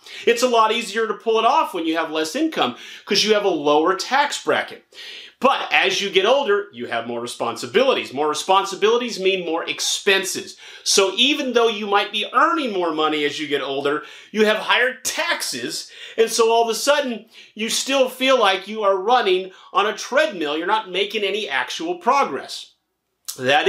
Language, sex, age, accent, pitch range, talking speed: English, male, 40-59, American, 165-255 Hz, 185 wpm